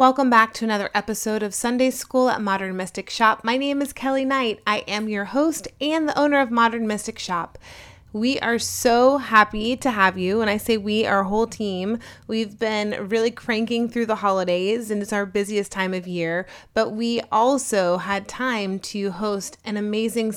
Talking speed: 190 wpm